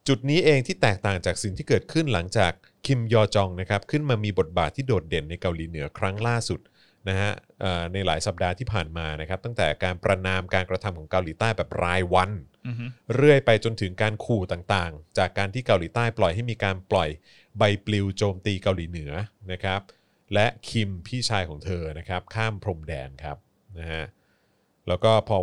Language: Thai